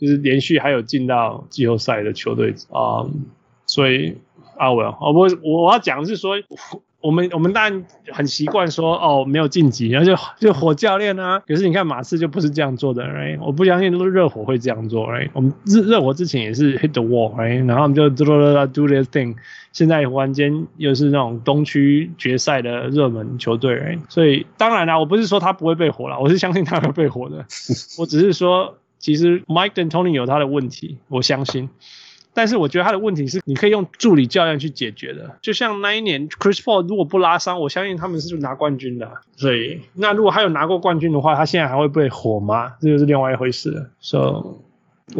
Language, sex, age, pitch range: Chinese, male, 20-39, 130-175 Hz